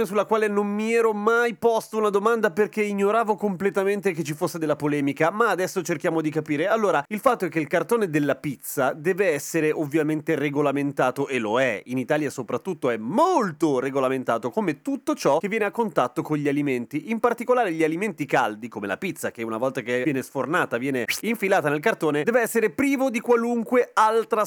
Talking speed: 190 wpm